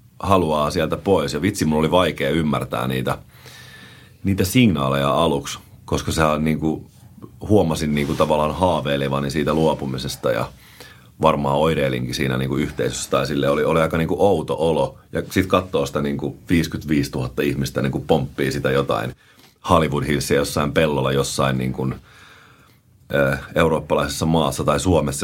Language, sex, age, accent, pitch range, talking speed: Finnish, male, 30-49, native, 70-80 Hz, 135 wpm